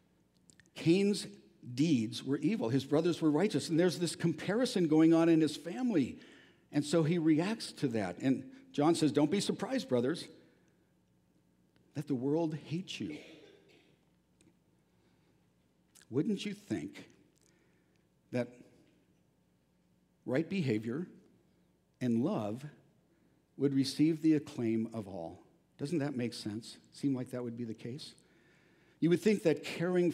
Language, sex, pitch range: English, male, 125-170 Hz